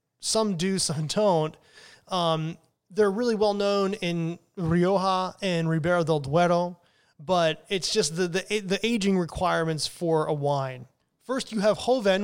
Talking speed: 145 wpm